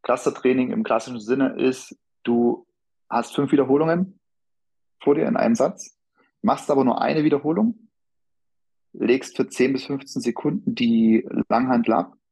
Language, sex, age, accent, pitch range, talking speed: German, male, 30-49, German, 105-135 Hz, 135 wpm